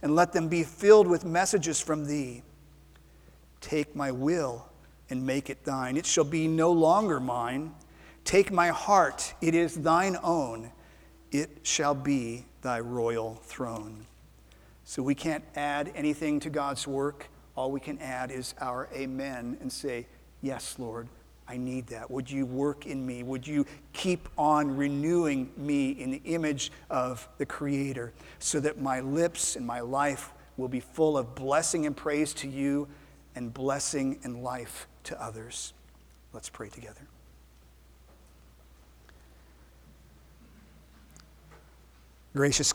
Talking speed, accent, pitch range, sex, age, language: 140 wpm, American, 115-145 Hz, male, 50-69, English